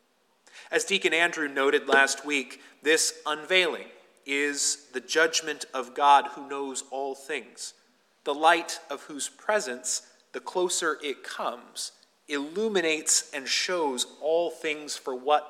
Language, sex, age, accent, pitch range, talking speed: English, male, 30-49, American, 140-185 Hz, 130 wpm